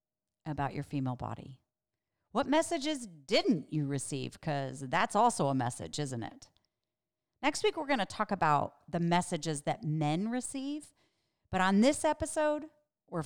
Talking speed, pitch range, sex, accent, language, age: 150 wpm, 150-225 Hz, female, American, English, 40-59